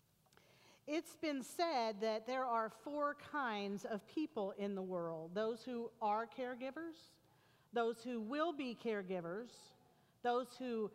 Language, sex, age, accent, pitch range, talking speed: English, female, 50-69, American, 190-250 Hz, 130 wpm